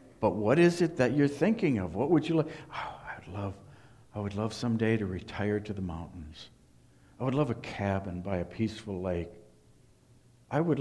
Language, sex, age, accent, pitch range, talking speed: English, male, 60-79, American, 100-130 Hz, 195 wpm